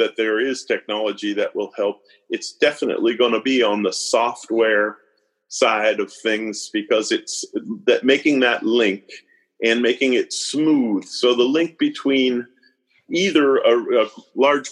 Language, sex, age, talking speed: English, male, 40-59, 145 wpm